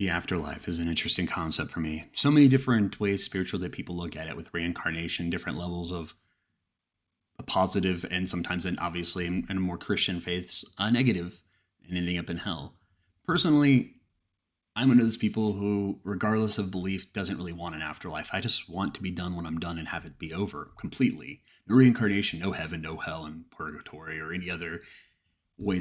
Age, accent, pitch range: 30-49, American, 85-120 Hz